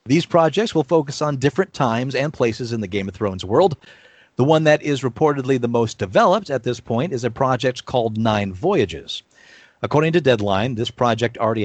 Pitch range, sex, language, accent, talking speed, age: 105-145 Hz, male, English, American, 195 wpm, 40-59